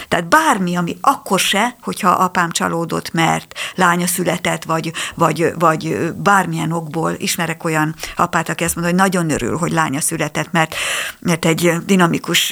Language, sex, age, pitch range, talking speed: Hungarian, female, 60-79, 170-210 Hz, 155 wpm